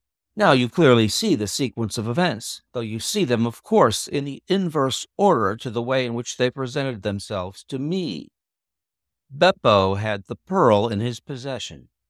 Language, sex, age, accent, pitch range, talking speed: English, male, 60-79, American, 105-145 Hz, 175 wpm